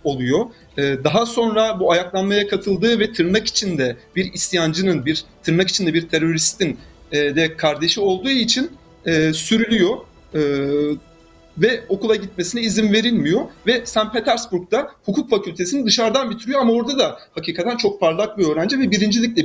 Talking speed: 135 wpm